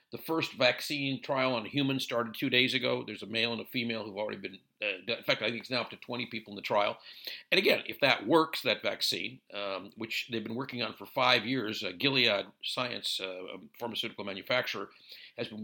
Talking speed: 220 wpm